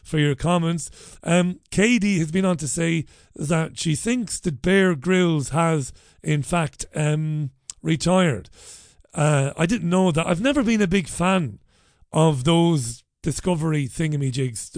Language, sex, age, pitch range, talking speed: English, male, 40-59, 145-180 Hz, 145 wpm